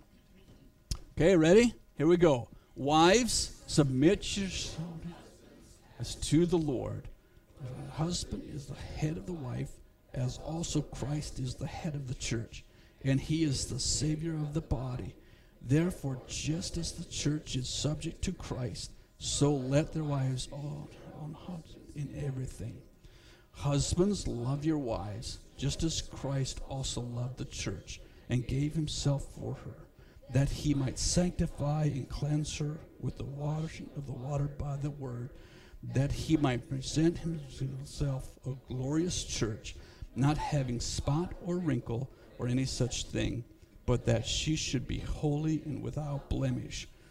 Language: English